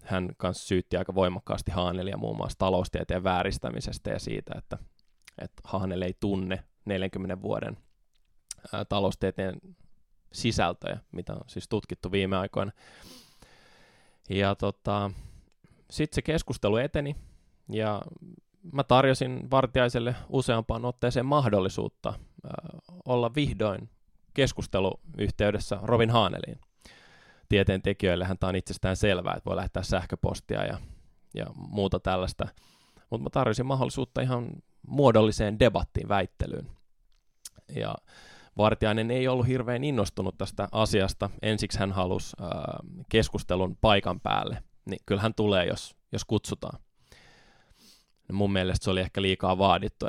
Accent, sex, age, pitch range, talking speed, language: native, male, 20-39, 95-120 Hz, 110 wpm, Finnish